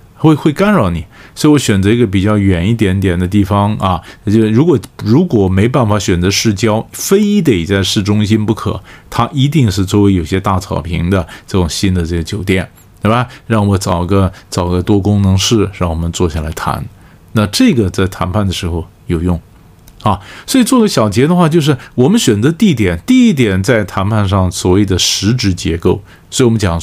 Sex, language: male, Chinese